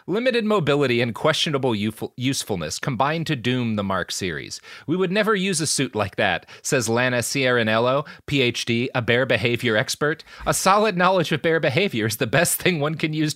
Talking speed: 180 wpm